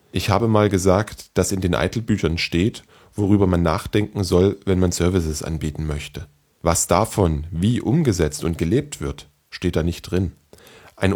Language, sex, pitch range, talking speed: German, male, 85-105 Hz, 160 wpm